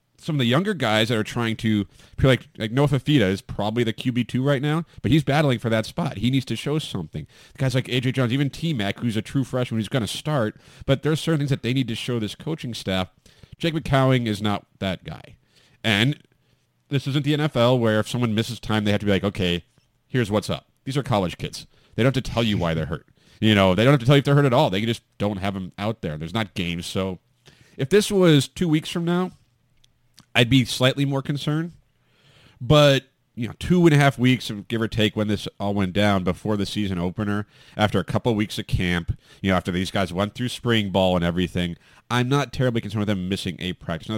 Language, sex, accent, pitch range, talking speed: English, male, American, 100-135 Hz, 245 wpm